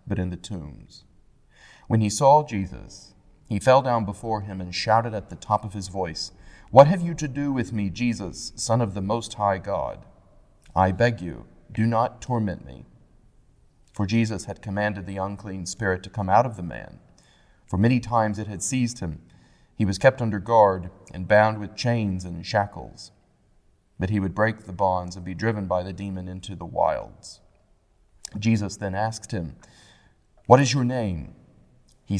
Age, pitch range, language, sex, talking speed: 30-49, 95-110 Hz, English, male, 180 wpm